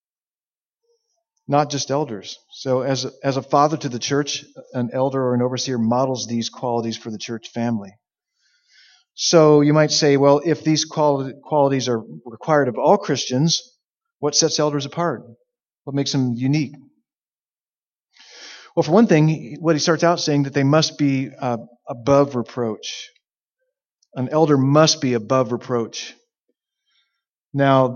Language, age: English, 40-59